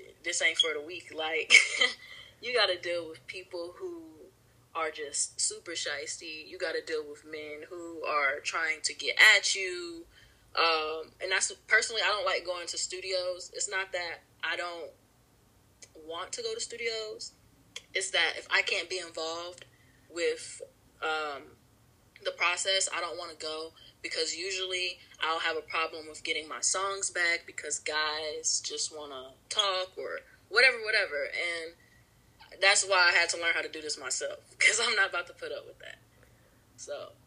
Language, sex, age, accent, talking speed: English, female, 20-39, American, 170 wpm